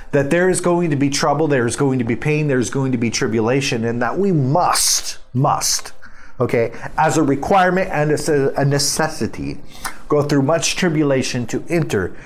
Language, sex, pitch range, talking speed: English, male, 125-155 Hz, 175 wpm